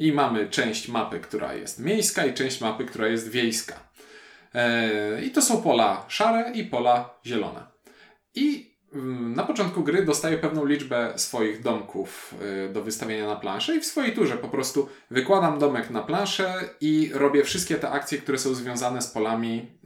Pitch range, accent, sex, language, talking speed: 115-145 Hz, native, male, Polish, 165 wpm